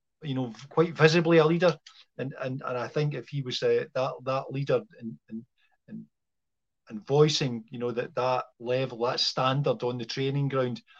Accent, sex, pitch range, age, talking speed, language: British, male, 125-160 Hz, 50-69, 180 wpm, English